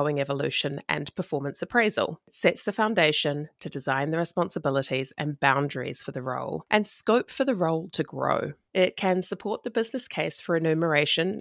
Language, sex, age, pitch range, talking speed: English, female, 30-49, 150-200 Hz, 165 wpm